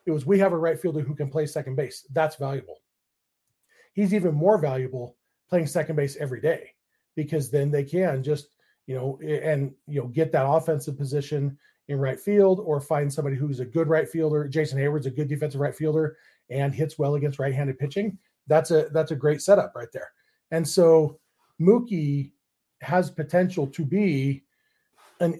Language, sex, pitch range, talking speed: English, male, 140-165 Hz, 180 wpm